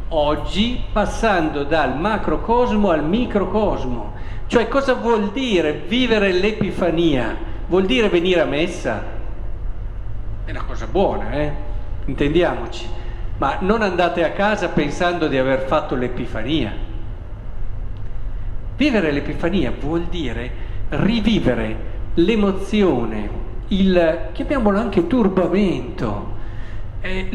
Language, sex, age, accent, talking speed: Italian, male, 50-69, native, 95 wpm